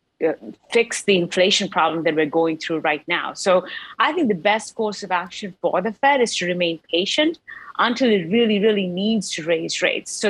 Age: 30-49